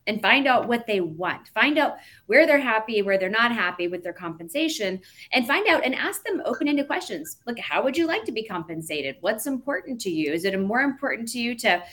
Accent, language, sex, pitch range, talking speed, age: American, English, female, 180-245 Hz, 225 wpm, 30-49